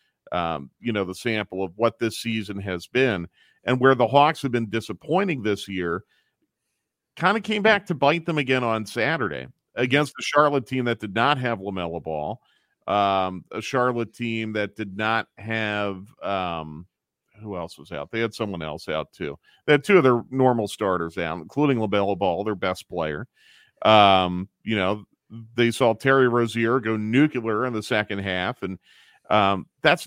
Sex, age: male, 40-59